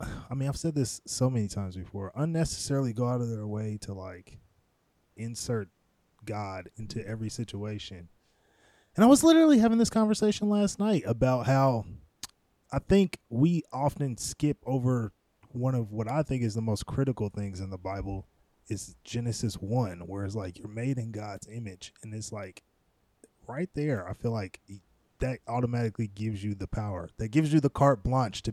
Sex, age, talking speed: male, 20-39, 175 wpm